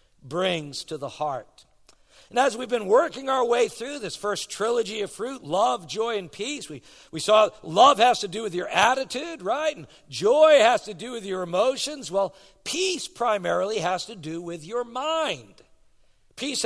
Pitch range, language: 160-240 Hz, English